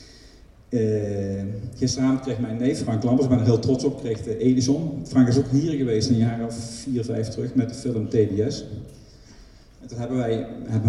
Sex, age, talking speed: male, 50-69, 185 wpm